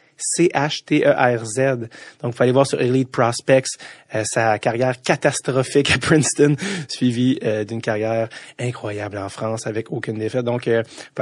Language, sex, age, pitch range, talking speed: English, male, 30-49, 120-150 Hz, 150 wpm